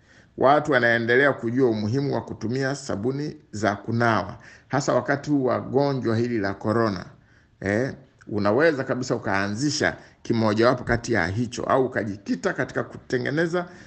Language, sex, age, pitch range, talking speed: Swahili, male, 50-69, 110-145 Hz, 120 wpm